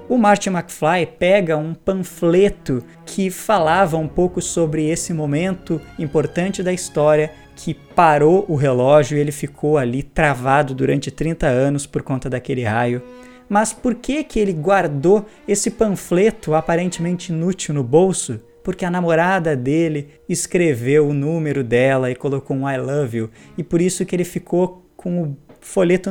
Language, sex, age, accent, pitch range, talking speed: Portuguese, male, 20-39, Brazilian, 145-185 Hz, 155 wpm